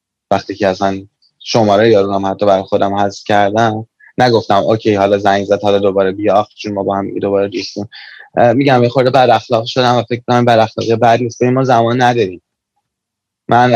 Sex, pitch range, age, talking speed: male, 100-120 Hz, 20-39, 185 wpm